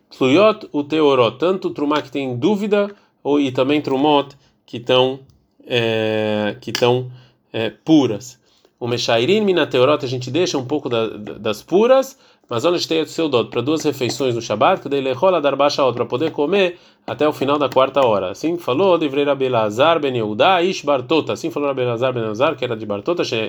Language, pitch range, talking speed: Portuguese, 125-170 Hz, 185 wpm